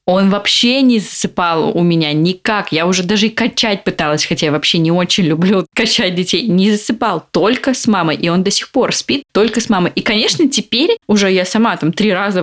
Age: 20-39